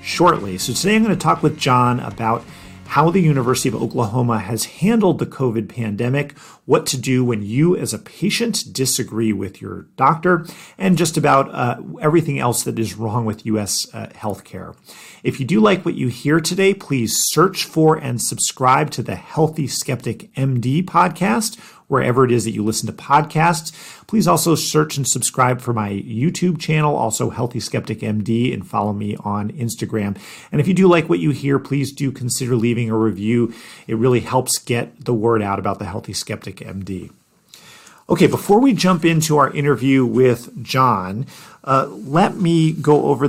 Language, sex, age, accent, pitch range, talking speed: English, male, 40-59, American, 115-155 Hz, 180 wpm